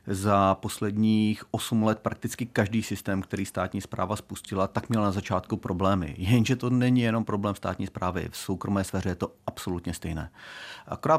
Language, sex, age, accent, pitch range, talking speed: Czech, male, 40-59, native, 95-120 Hz, 165 wpm